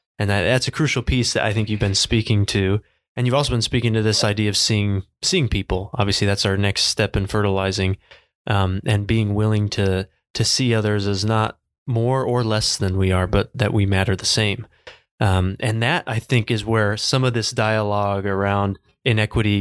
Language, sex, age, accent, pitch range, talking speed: English, male, 20-39, American, 100-115 Hz, 205 wpm